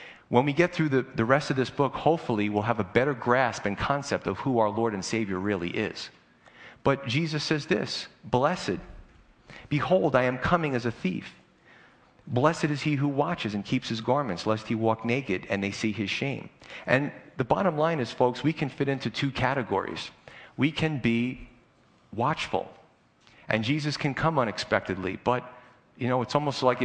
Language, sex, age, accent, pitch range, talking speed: English, male, 40-59, American, 115-145 Hz, 185 wpm